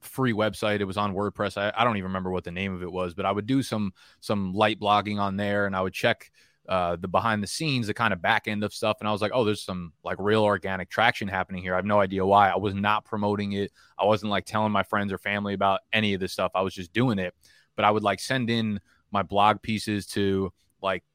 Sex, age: male, 20-39